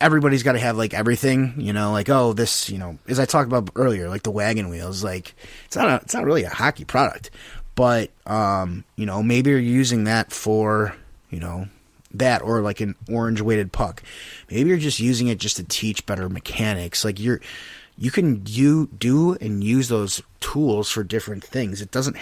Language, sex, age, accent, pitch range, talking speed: English, male, 20-39, American, 100-120 Hz, 205 wpm